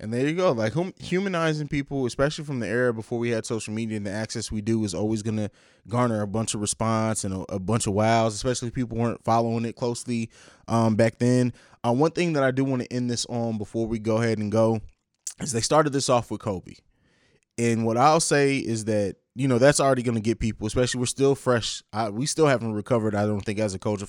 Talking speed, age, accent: 245 wpm, 20-39, American